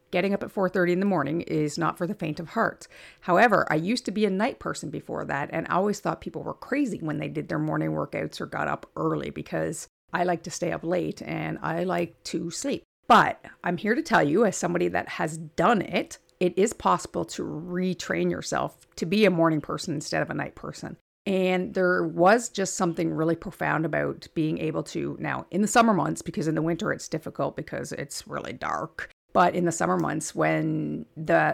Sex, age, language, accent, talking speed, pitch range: female, 40-59, English, American, 220 wpm, 165-195 Hz